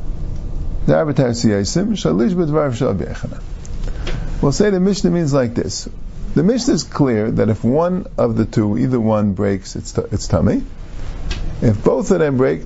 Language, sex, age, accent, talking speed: English, male, 50-69, American, 135 wpm